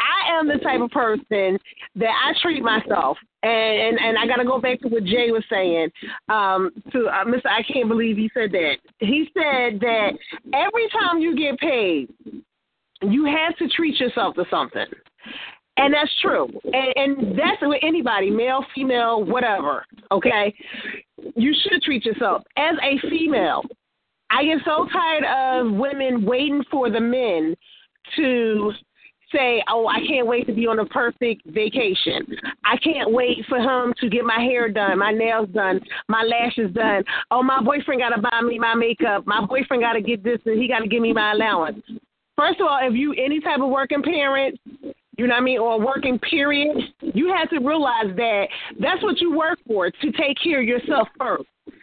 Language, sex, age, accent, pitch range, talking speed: English, female, 30-49, American, 225-290 Hz, 190 wpm